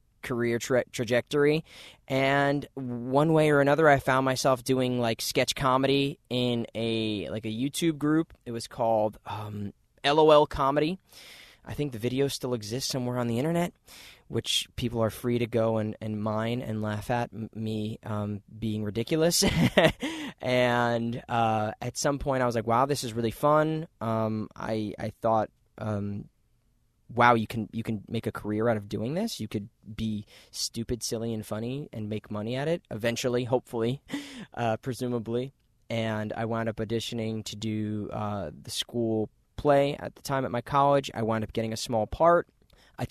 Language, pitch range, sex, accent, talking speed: English, 110-135 Hz, male, American, 170 wpm